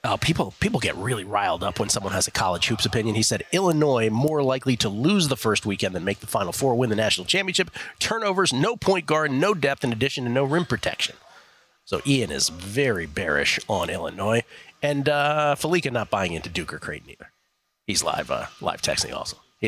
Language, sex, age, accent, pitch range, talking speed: English, male, 40-59, American, 115-155 Hz, 210 wpm